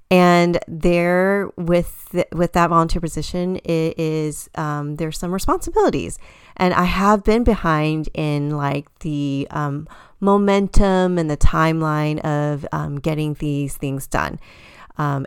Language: English